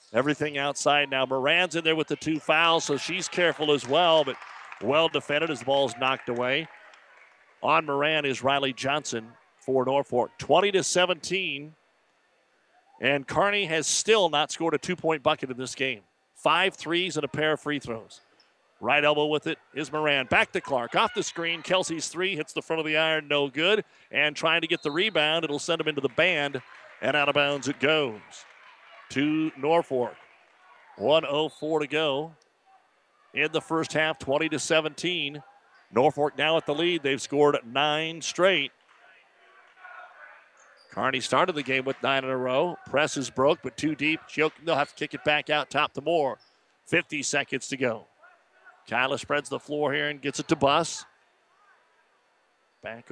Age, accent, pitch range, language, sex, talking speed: 50-69, American, 140-165 Hz, English, male, 170 wpm